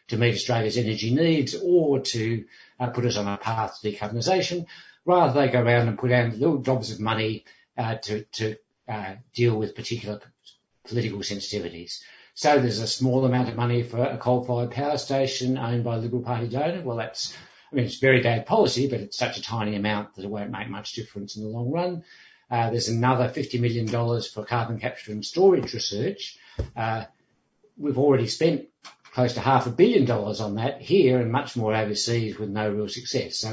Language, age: English, 60-79